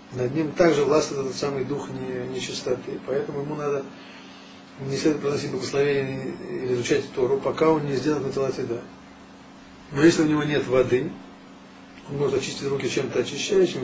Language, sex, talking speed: Russian, male, 155 wpm